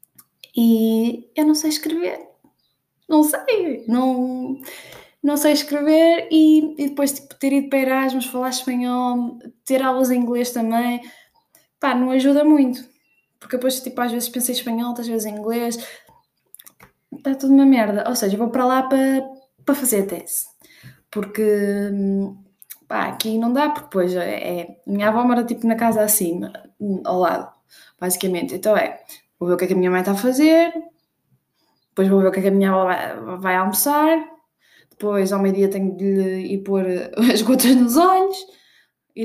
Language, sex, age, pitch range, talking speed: Portuguese, female, 20-39, 205-285 Hz, 175 wpm